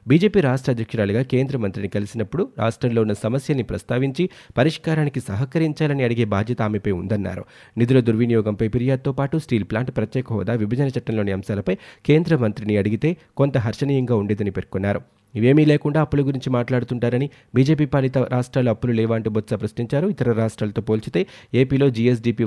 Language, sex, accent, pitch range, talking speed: Telugu, male, native, 105-135 Hz, 135 wpm